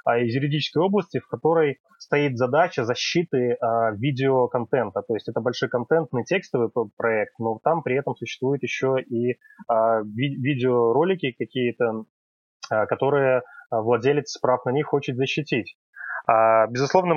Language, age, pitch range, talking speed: Russian, 20-39, 120-145 Hz, 120 wpm